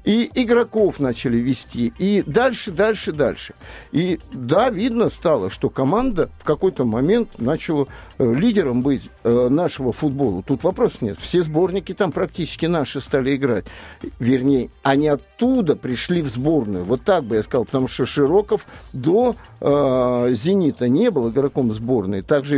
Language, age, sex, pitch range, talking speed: Russian, 50-69, male, 140-210 Hz, 145 wpm